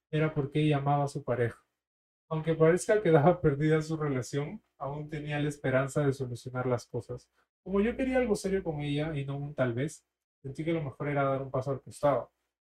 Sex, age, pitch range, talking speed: male, 30-49, 135-165 Hz, 210 wpm